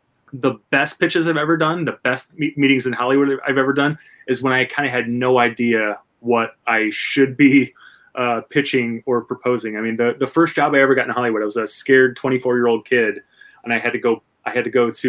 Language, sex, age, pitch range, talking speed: English, male, 20-39, 115-135 Hz, 240 wpm